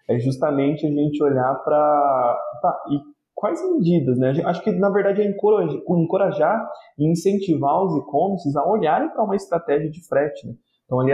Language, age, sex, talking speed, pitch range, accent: Portuguese, 20-39, male, 160 wpm, 125-165 Hz, Brazilian